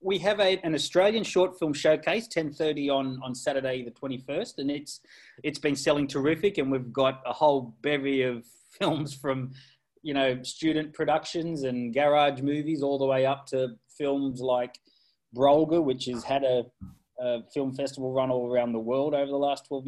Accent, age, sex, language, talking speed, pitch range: Australian, 20-39, male, English, 180 wpm, 130-150 Hz